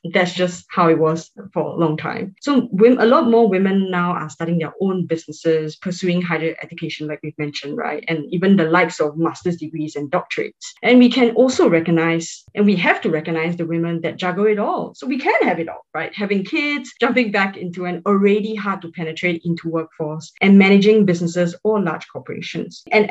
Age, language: 20-39, English